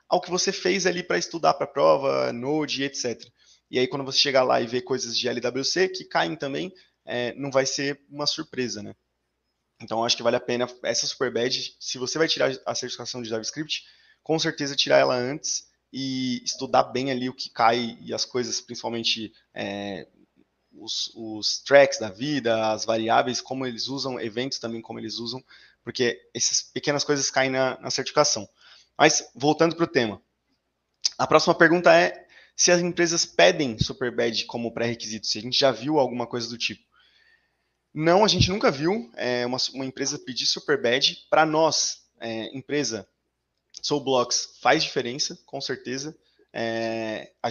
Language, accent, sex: Portuguese, Brazilian, male